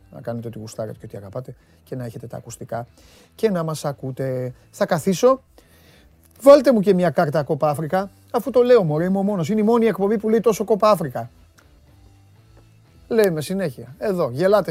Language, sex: Greek, male